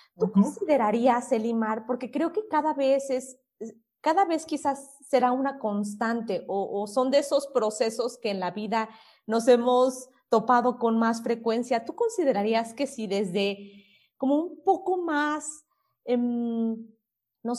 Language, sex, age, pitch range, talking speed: Spanish, female, 30-49, 230-290 Hz, 145 wpm